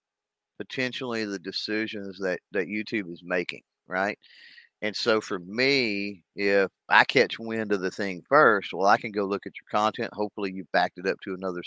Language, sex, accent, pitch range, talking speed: English, male, American, 95-110 Hz, 185 wpm